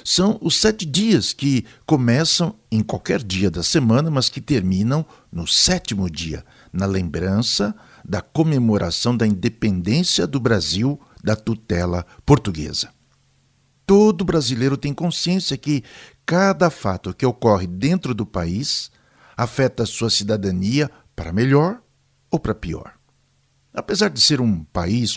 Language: Portuguese